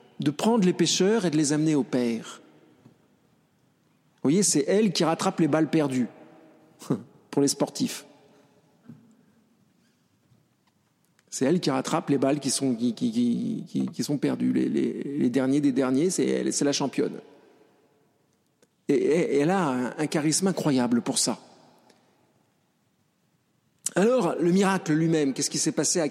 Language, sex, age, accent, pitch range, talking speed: French, male, 50-69, French, 140-195 Hz, 150 wpm